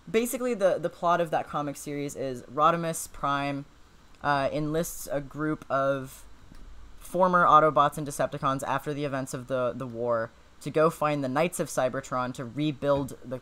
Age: 10-29